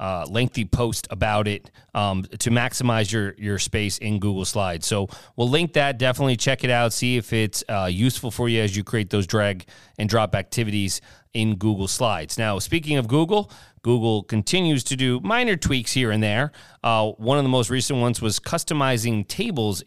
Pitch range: 105-130 Hz